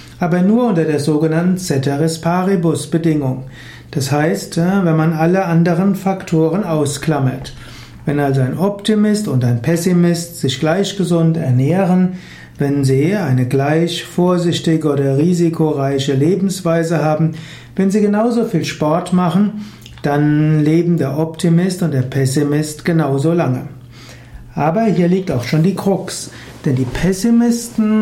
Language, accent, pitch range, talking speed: German, German, 145-190 Hz, 130 wpm